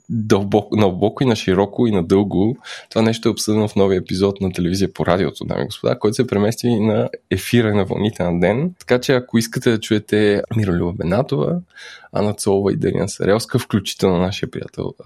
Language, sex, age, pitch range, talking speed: Bulgarian, male, 20-39, 100-125 Hz, 185 wpm